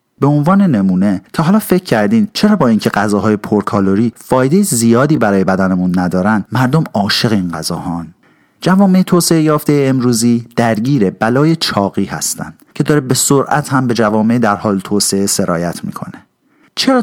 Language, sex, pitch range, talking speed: Persian, male, 110-160 Hz, 150 wpm